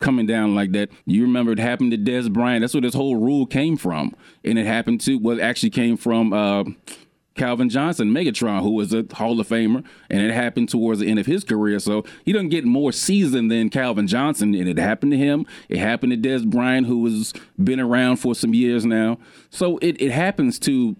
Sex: male